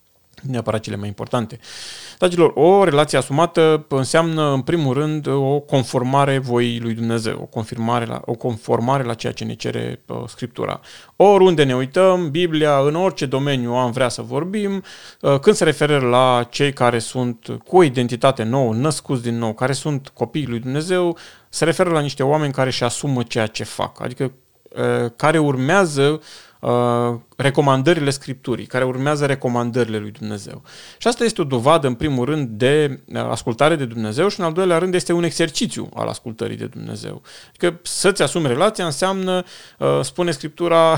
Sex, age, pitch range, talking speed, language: male, 30-49, 120-165 Hz, 160 wpm, Romanian